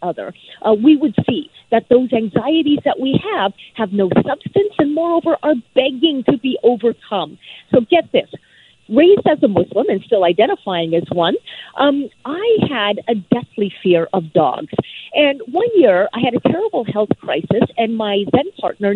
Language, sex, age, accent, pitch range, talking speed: English, female, 40-59, American, 200-300 Hz, 170 wpm